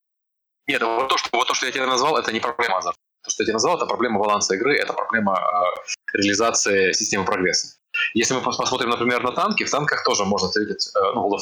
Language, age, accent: Russian, 20-39, native